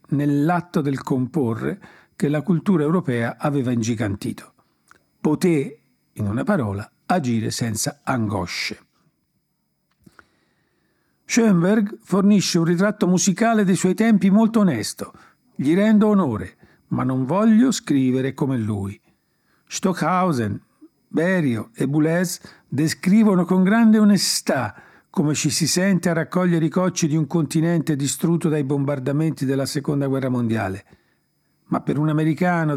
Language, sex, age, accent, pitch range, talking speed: Italian, male, 50-69, native, 130-180 Hz, 120 wpm